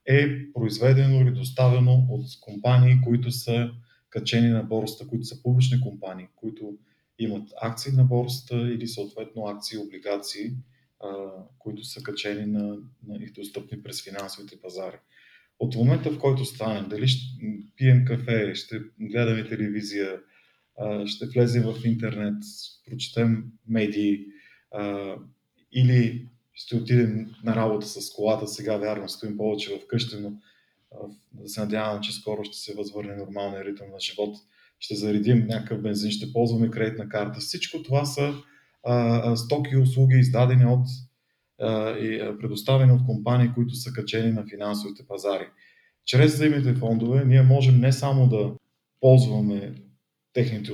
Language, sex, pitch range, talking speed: Bulgarian, male, 105-125 Hz, 140 wpm